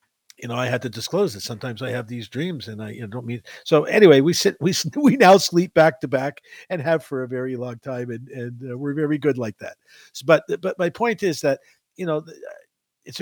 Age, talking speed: 50-69, 245 wpm